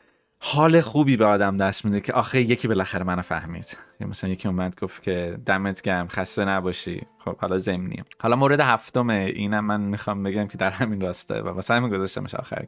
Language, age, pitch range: Persian, 20-39, 95-115 Hz